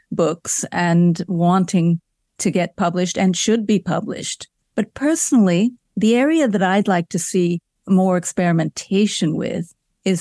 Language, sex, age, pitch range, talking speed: English, female, 50-69, 175-210 Hz, 135 wpm